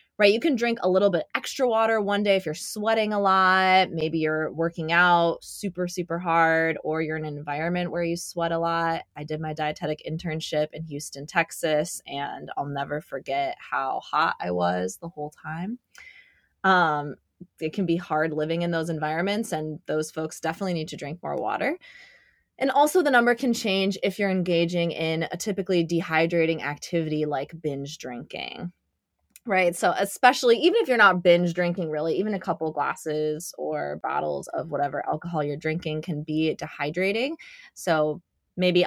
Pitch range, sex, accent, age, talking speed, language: 155-195 Hz, female, American, 20-39, 175 wpm, English